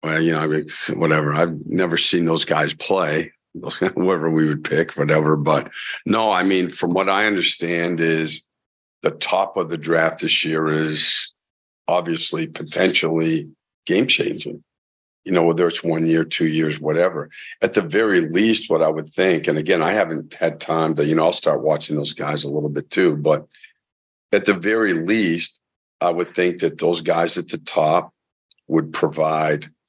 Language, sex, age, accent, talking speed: English, male, 50-69, American, 180 wpm